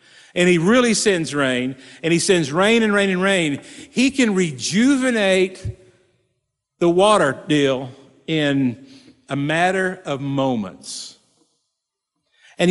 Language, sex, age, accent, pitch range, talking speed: English, male, 50-69, American, 155-240 Hz, 120 wpm